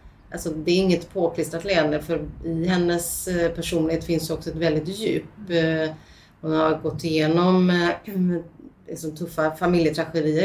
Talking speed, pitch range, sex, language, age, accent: 120 wpm, 155-175 Hz, female, Swedish, 30-49, native